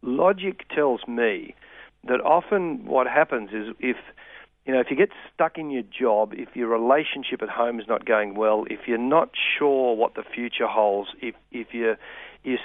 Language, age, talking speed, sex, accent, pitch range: English, 50-69, 185 wpm, male, Australian, 110-135 Hz